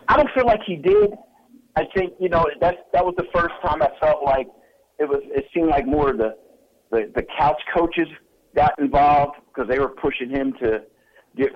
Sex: male